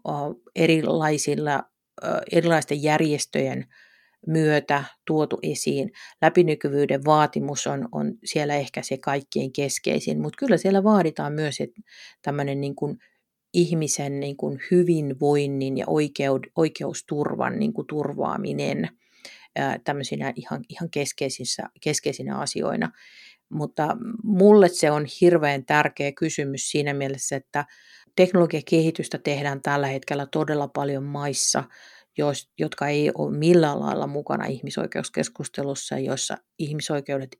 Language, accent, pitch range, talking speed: Finnish, native, 140-165 Hz, 100 wpm